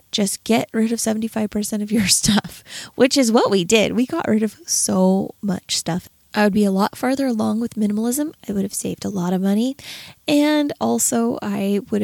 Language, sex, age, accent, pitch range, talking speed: English, female, 20-39, American, 190-225 Hz, 205 wpm